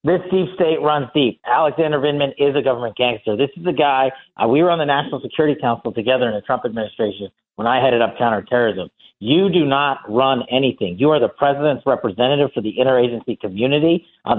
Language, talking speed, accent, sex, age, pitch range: English, 200 wpm, American, male, 50-69, 135-185 Hz